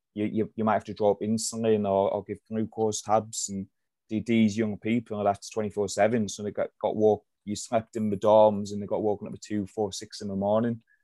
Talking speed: 235 wpm